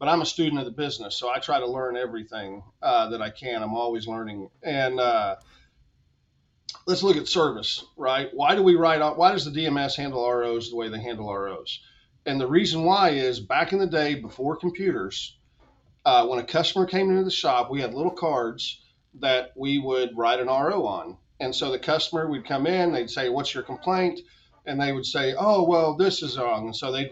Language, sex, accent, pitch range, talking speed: English, male, American, 130-175 Hz, 215 wpm